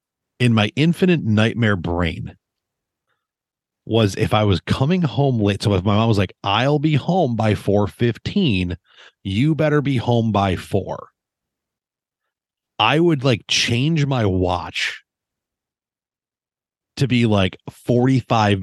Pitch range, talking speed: 100-150 Hz, 130 wpm